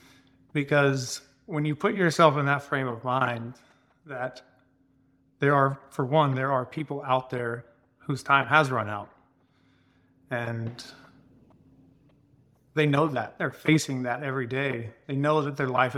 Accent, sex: American, male